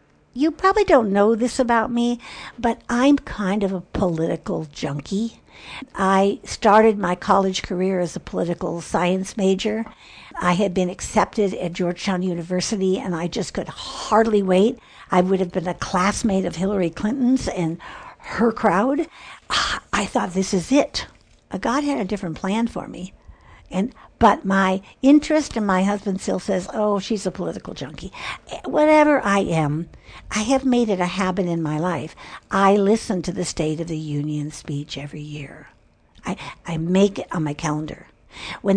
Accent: American